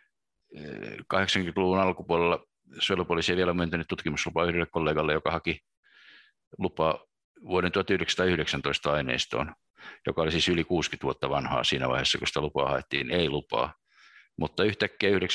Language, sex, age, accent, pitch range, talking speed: Finnish, male, 50-69, native, 75-90 Hz, 125 wpm